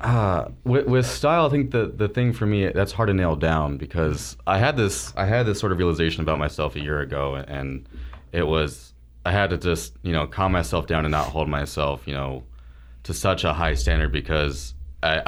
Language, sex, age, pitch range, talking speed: English, male, 30-49, 70-85 Hz, 220 wpm